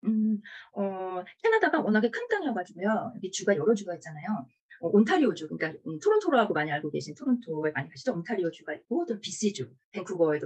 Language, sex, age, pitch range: Korean, female, 40-59, 170-255 Hz